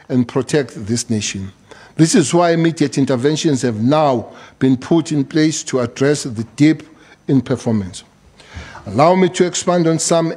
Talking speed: 155 wpm